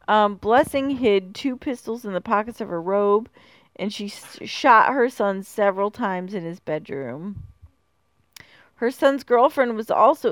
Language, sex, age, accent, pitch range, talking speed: English, female, 40-59, American, 185-225 Hz, 150 wpm